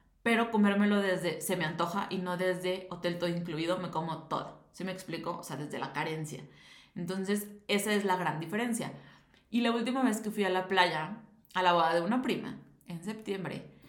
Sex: female